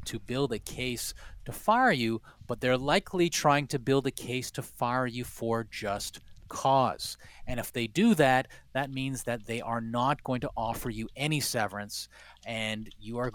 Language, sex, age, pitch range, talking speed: English, male, 30-49, 110-135 Hz, 185 wpm